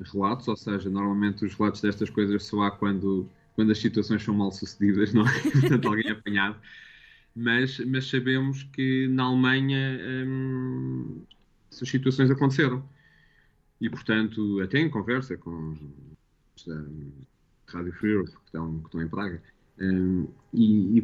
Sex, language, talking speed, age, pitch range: male, Portuguese, 140 wpm, 20-39, 105-140 Hz